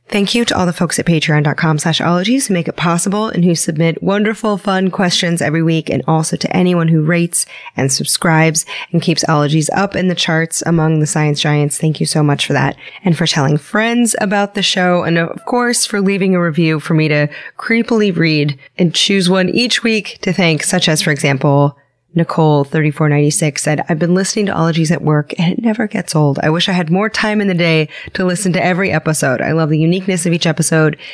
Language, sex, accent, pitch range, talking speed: English, female, American, 155-195 Hz, 220 wpm